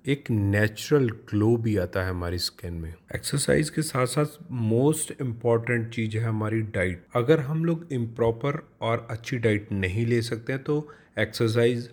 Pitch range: 105-130 Hz